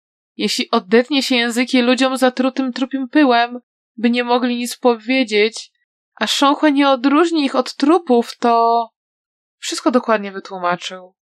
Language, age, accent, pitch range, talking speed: Polish, 20-39, native, 210-295 Hz, 125 wpm